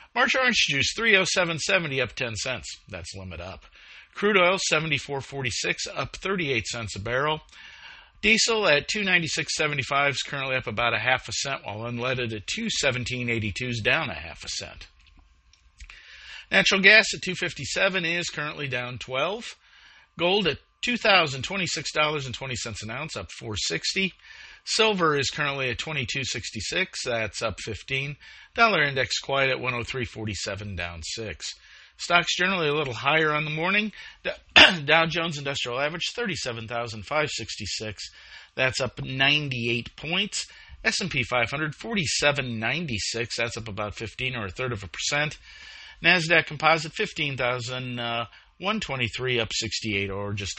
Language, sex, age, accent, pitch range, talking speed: English, male, 50-69, American, 115-165 Hz, 125 wpm